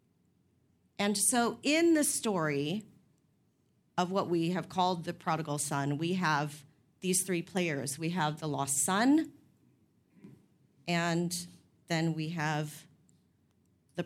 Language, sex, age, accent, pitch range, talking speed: English, female, 40-59, American, 165-205 Hz, 120 wpm